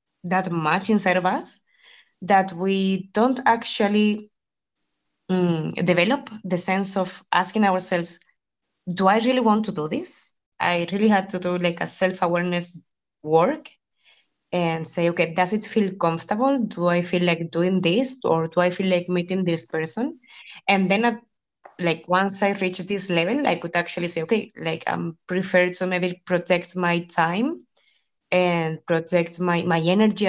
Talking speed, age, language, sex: 160 wpm, 20-39, English, female